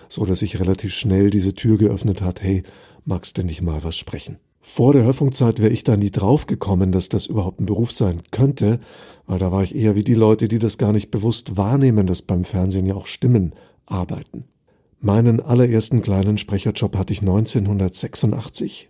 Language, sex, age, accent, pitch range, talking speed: German, male, 50-69, German, 100-130 Hz, 185 wpm